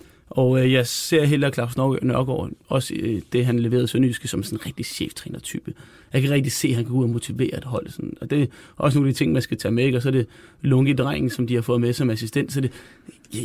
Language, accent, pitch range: Danish, native, 125-150 Hz